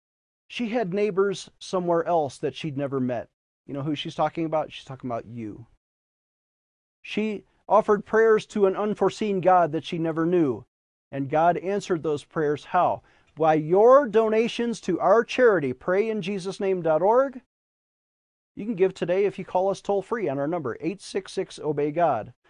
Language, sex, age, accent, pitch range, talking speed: English, male, 40-59, American, 140-195 Hz, 150 wpm